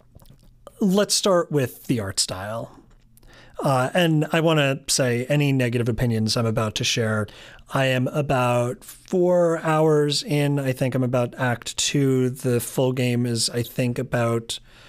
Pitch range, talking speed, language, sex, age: 120-145 Hz, 155 wpm, English, male, 30-49